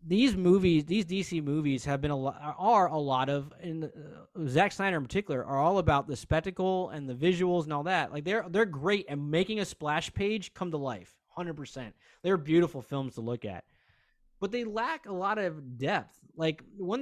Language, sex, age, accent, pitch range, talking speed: English, male, 20-39, American, 140-190 Hz, 205 wpm